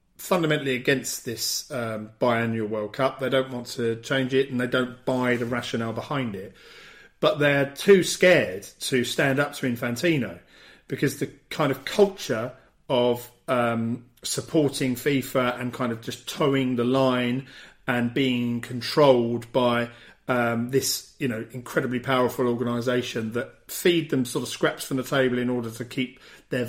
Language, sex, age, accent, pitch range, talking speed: English, male, 40-59, British, 120-140 Hz, 160 wpm